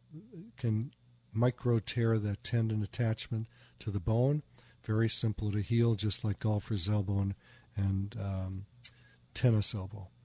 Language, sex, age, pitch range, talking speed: English, male, 50-69, 105-125 Hz, 130 wpm